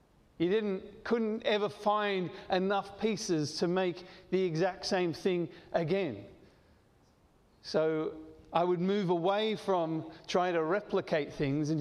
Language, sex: English, male